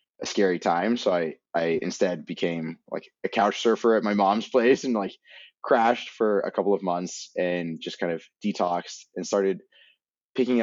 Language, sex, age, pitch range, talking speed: English, male, 20-39, 80-100 Hz, 180 wpm